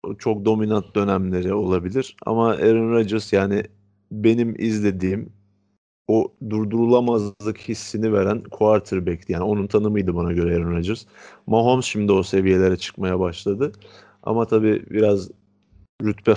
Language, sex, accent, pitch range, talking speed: Turkish, male, native, 95-110 Hz, 115 wpm